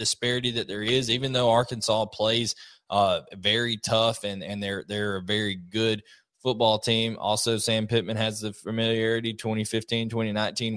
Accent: American